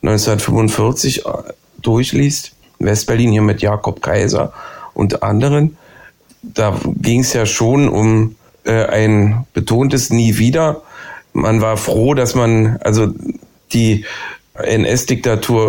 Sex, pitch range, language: male, 105-120 Hz, German